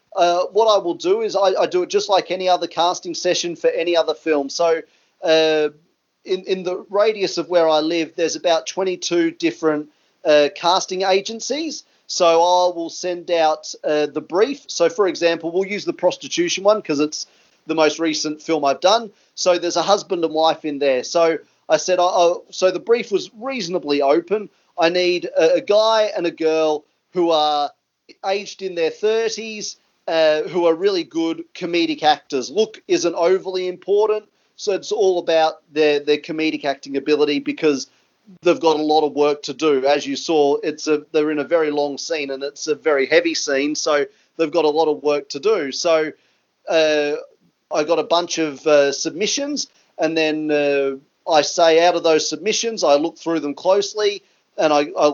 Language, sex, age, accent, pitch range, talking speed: English, male, 30-49, Australian, 150-190 Hz, 190 wpm